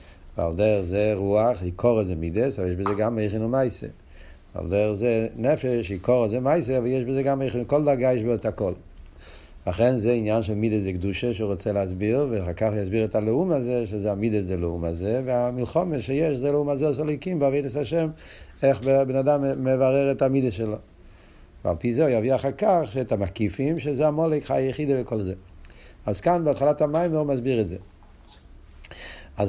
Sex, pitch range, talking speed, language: male, 100-135 Hz, 140 wpm, Hebrew